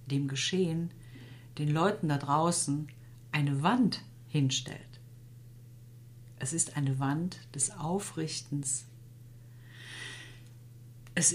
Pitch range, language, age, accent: 120-170 Hz, German, 50-69, German